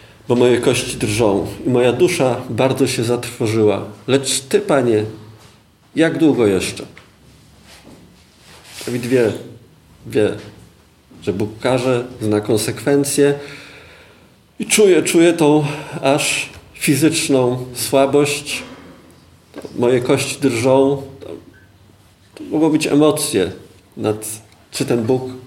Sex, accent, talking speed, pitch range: male, native, 100 wpm, 110-135 Hz